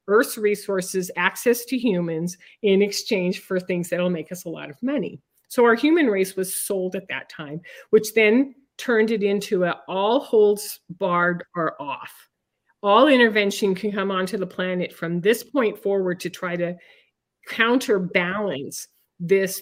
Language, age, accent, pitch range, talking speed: English, 50-69, American, 185-225 Hz, 160 wpm